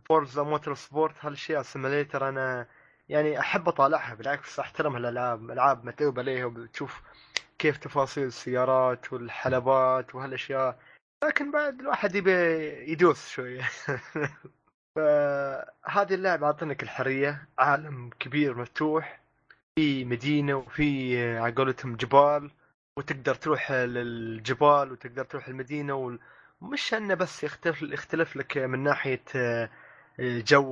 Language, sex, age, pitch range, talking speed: Arabic, male, 20-39, 130-155 Hz, 110 wpm